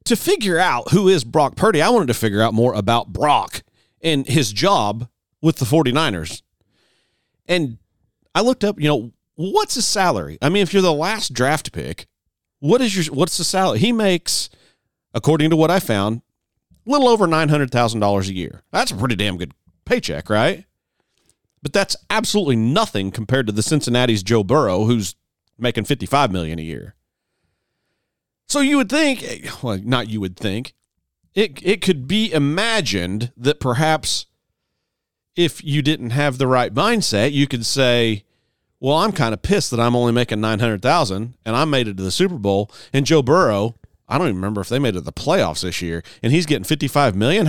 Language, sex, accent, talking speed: English, male, American, 180 wpm